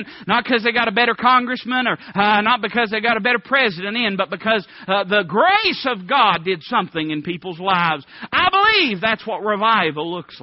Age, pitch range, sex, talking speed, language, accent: 40-59, 200-255 Hz, male, 200 wpm, English, American